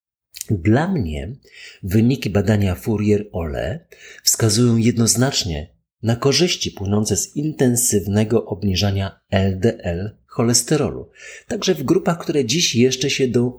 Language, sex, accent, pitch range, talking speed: Polish, male, native, 95-135 Hz, 100 wpm